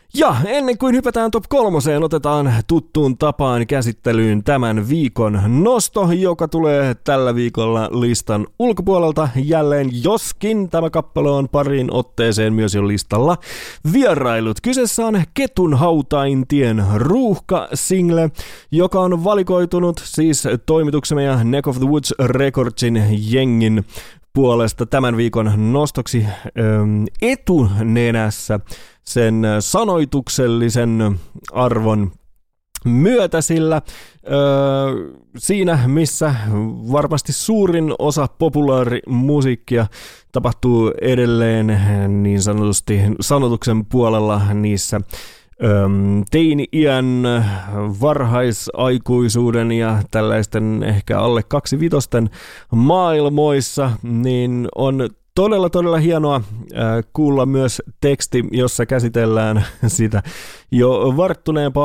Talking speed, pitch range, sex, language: 90 wpm, 110-150 Hz, male, English